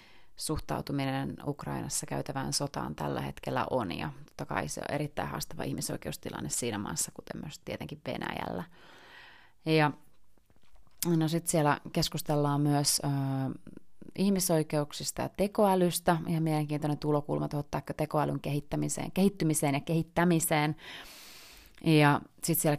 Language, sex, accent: Finnish, female, native